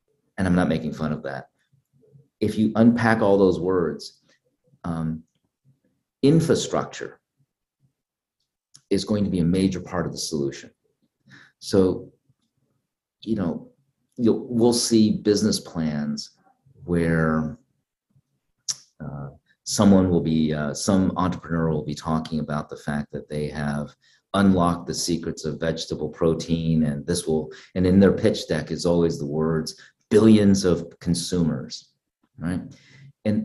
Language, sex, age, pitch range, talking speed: English, male, 40-59, 80-110 Hz, 130 wpm